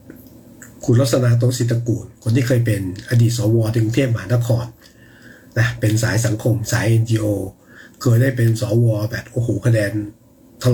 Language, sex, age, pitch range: Thai, male, 60-79, 115-155 Hz